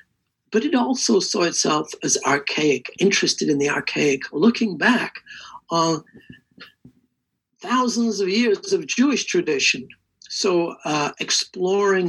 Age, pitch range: 60-79, 145-225 Hz